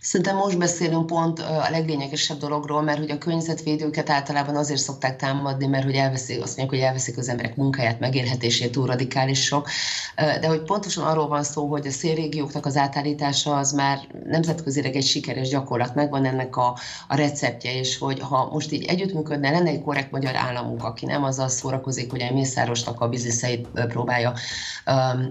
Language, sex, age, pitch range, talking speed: Hungarian, female, 30-49, 135-150 Hz, 165 wpm